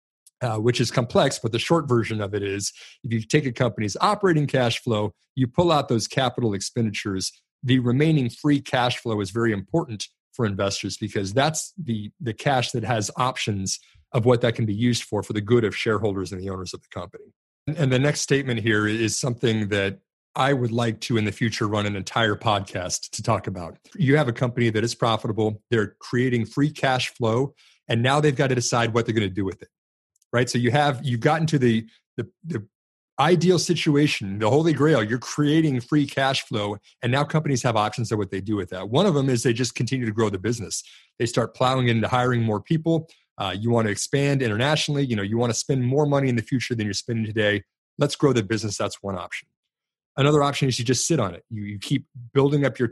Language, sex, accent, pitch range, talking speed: English, male, American, 110-135 Hz, 225 wpm